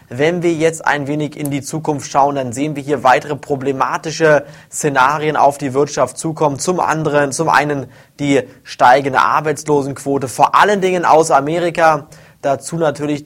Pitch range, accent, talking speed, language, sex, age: 140-165 Hz, German, 155 wpm, German, male, 20-39